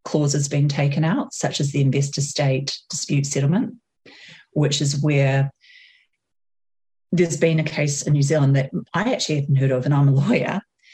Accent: Australian